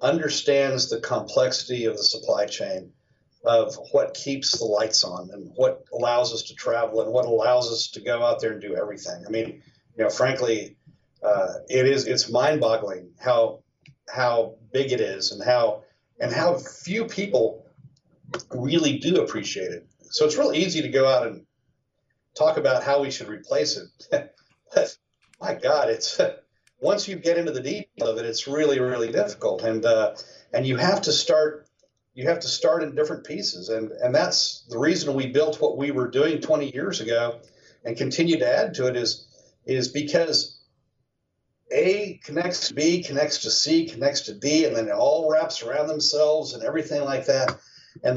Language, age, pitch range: English, 40-59, 125-165 Hz